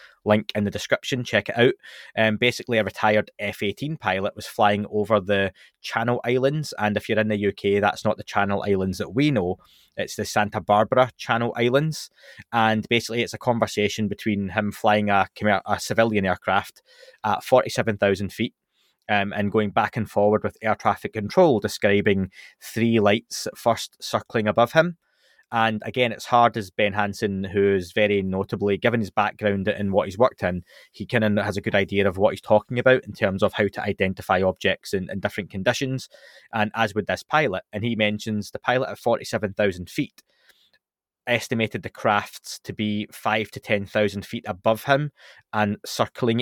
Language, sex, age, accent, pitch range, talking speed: English, male, 20-39, British, 100-120 Hz, 180 wpm